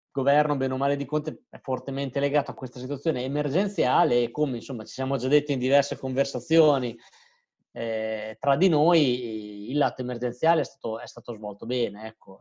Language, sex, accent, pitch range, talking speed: Italian, male, native, 120-150 Hz, 180 wpm